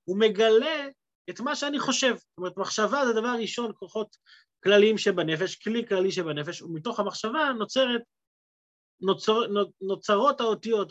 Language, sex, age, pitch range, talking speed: Hebrew, male, 30-49, 160-230 Hz, 130 wpm